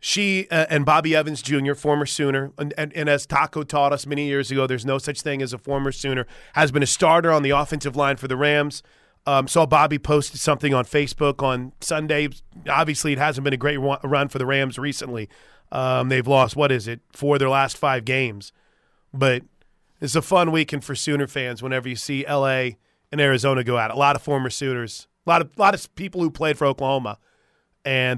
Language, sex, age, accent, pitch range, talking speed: English, male, 30-49, American, 135-155 Hz, 210 wpm